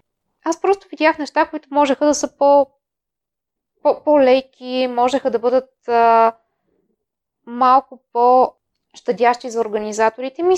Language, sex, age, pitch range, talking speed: Bulgarian, female, 20-39, 215-265 Hz, 115 wpm